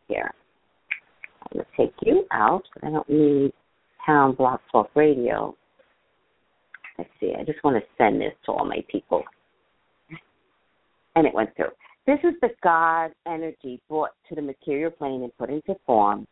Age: 50-69